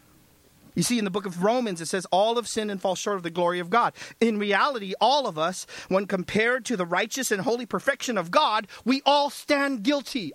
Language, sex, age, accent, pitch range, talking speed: English, male, 40-59, American, 200-270 Hz, 225 wpm